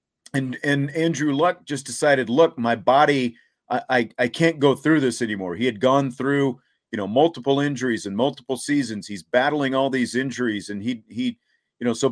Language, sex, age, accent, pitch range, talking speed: English, male, 40-59, American, 125-155 Hz, 195 wpm